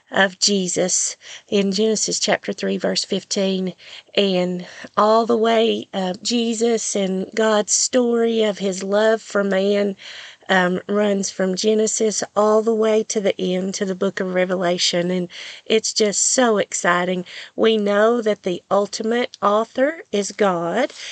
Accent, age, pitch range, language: American, 40-59, 185-215 Hz, English